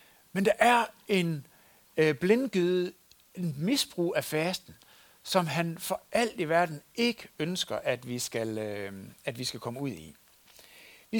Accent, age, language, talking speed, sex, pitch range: native, 60-79, Danish, 155 wpm, male, 155-225 Hz